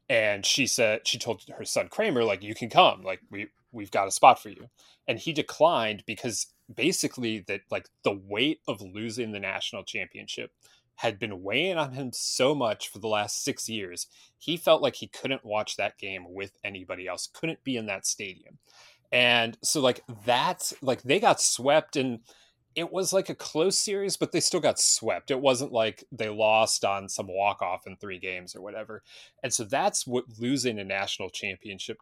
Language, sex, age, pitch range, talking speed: English, male, 30-49, 100-130 Hz, 195 wpm